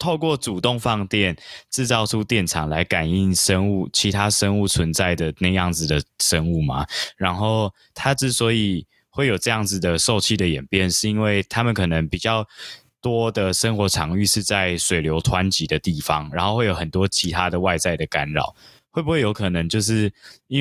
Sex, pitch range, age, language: male, 90-110 Hz, 20-39, Chinese